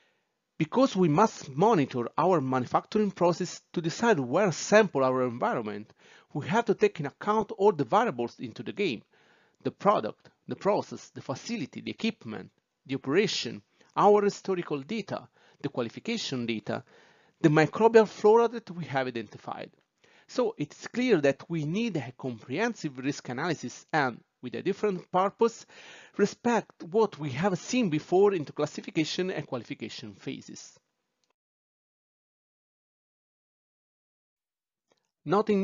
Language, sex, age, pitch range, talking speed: English, male, 40-59, 135-205 Hz, 130 wpm